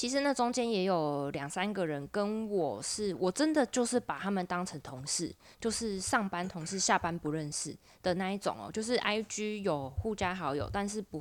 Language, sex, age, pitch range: Chinese, female, 20-39, 165-210 Hz